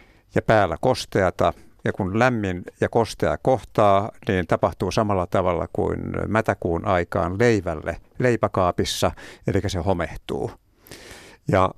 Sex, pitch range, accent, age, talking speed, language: male, 95-115 Hz, native, 60-79, 110 wpm, Finnish